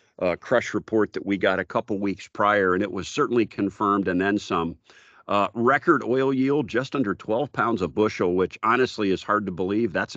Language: English